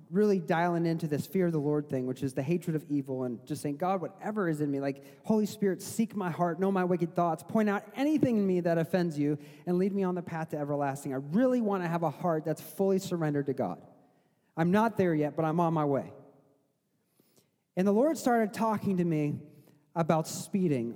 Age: 30-49